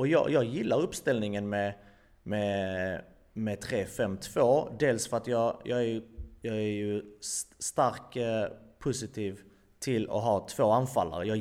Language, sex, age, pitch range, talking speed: Swedish, male, 30-49, 100-120 Hz, 155 wpm